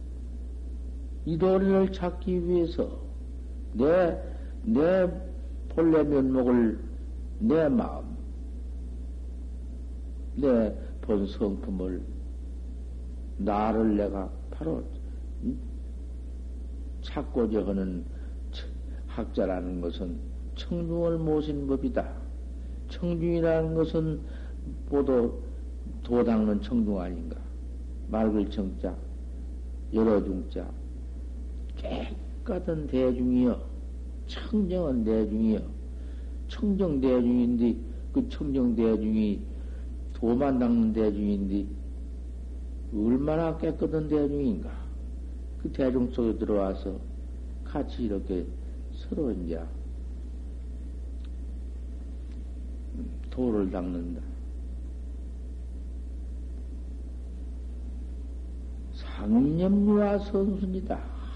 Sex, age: male, 60-79